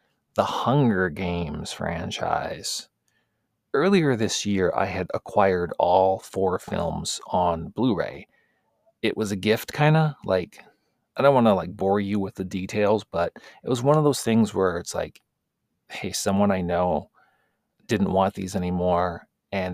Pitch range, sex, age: 95-110 Hz, male, 30-49